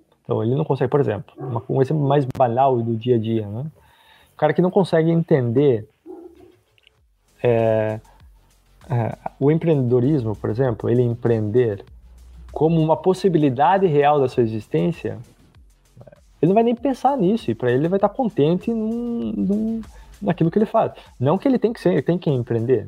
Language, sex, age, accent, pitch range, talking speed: Portuguese, male, 20-39, Brazilian, 110-160 Hz, 170 wpm